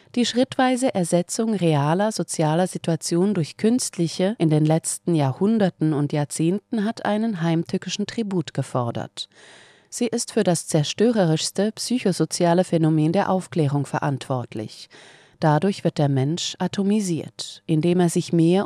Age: 30-49